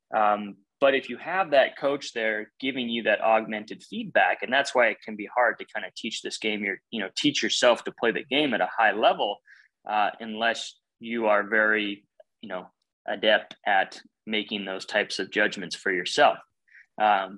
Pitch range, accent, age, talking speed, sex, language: 105-130 Hz, American, 20-39, 195 wpm, male, English